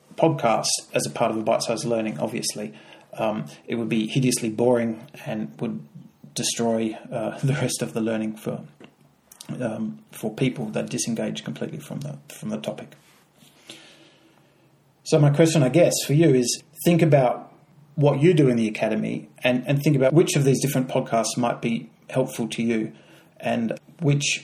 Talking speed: 165 wpm